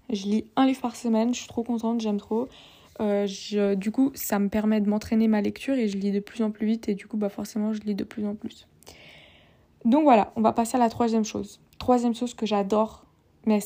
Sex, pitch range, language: female, 215-245 Hz, French